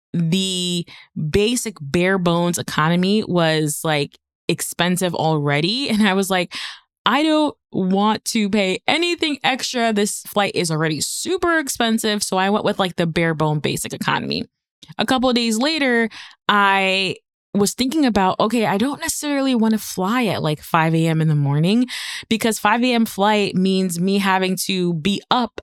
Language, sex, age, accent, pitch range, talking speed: English, female, 20-39, American, 170-215 Hz, 160 wpm